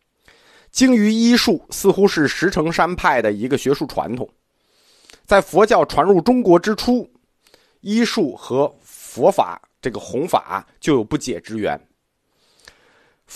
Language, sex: Chinese, male